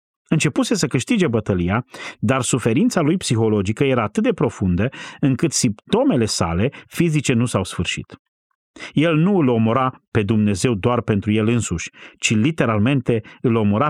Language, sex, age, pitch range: Romanian, male, 40-59, 105-140 Hz